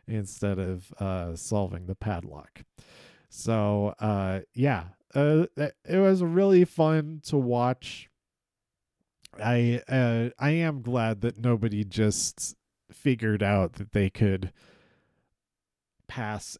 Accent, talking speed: American, 110 wpm